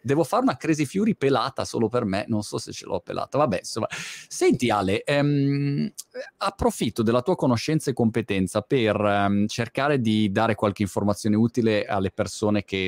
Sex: male